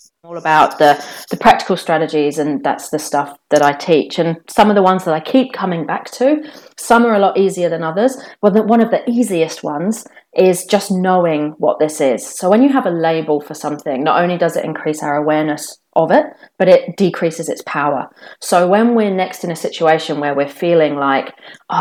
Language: English